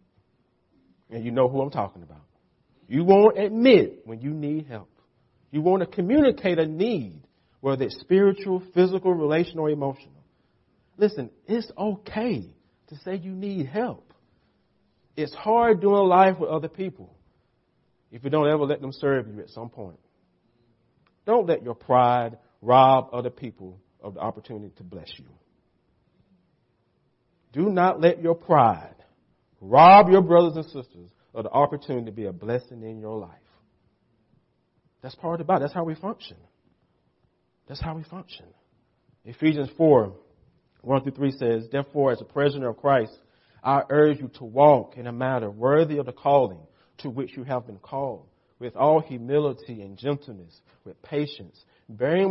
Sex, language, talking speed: male, English, 155 wpm